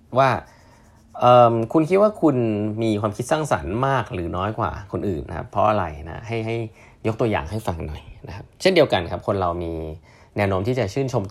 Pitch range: 90-115 Hz